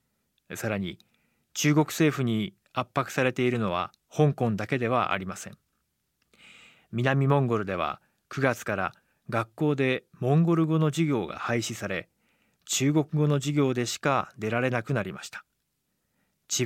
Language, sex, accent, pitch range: Japanese, male, native, 115-145 Hz